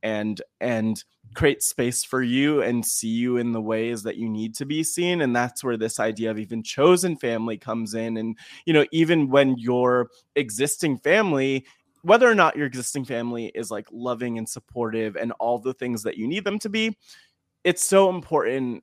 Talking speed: 195 wpm